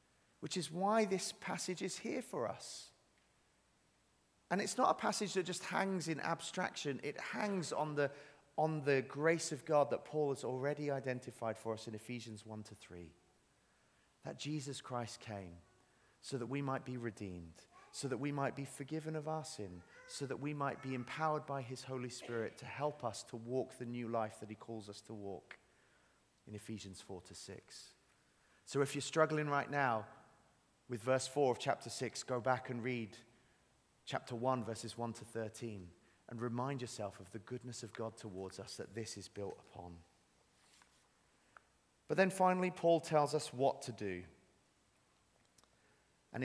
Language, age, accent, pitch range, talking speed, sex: English, 30-49, British, 110-155 Hz, 175 wpm, male